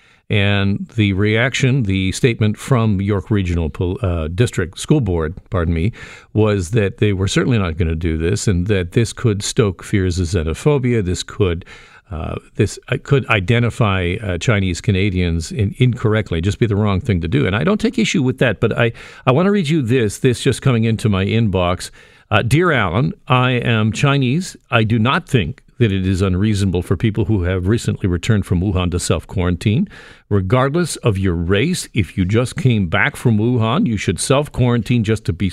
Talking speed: 190 wpm